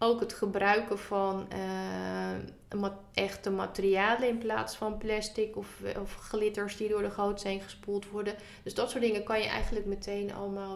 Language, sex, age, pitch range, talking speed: Dutch, female, 30-49, 175-210 Hz, 165 wpm